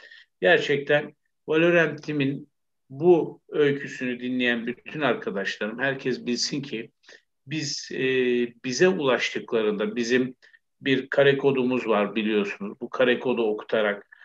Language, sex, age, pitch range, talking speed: Turkish, male, 50-69, 120-150 Hz, 105 wpm